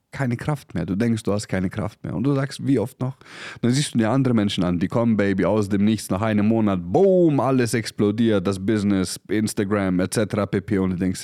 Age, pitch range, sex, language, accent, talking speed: 30-49, 85-110 Hz, male, German, German, 230 wpm